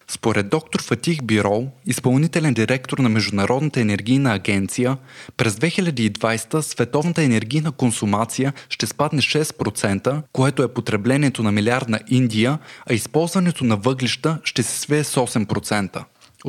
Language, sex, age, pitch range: Bulgarian, male, 20-39, 110-145 Hz